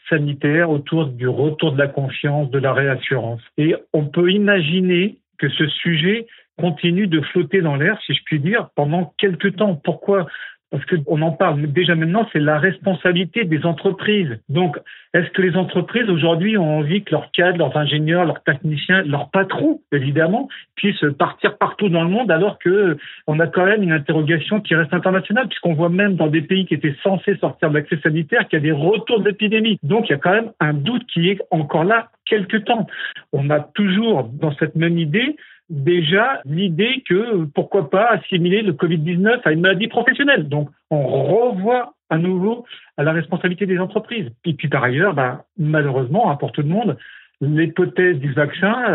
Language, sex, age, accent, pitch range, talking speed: French, male, 50-69, French, 150-195 Hz, 185 wpm